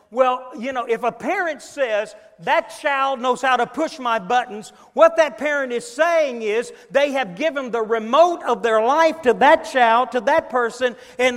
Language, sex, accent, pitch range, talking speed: English, male, American, 220-305 Hz, 190 wpm